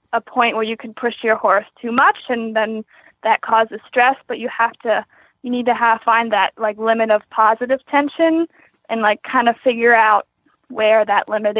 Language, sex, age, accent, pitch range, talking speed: English, female, 10-29, American, 215-255 Hz, 200 wpm